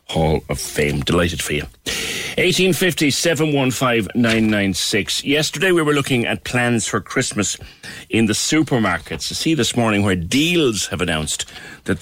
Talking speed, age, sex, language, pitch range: 140 wpm, 60-79, male, English, 85-120 Hz